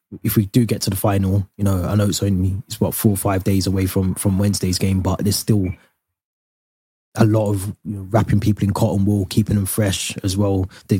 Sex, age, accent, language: male, 20-39, British, English